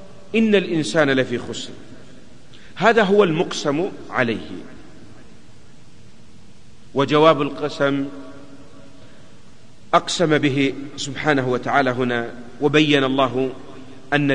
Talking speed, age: 75 wpm, 40-59